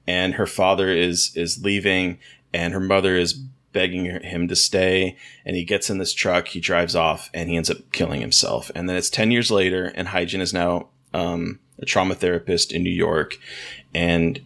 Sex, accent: male, American